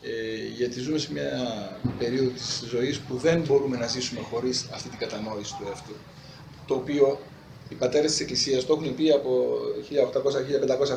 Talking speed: 165 wpm